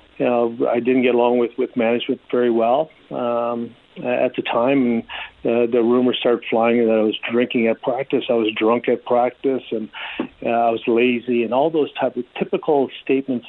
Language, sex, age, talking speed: English, male, 50-69, 195 wpm